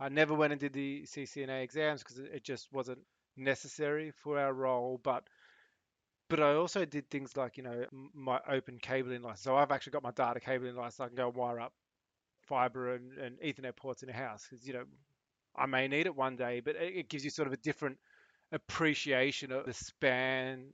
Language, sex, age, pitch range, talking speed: English, male, 20-39, 125-140 Hz, 210 wpm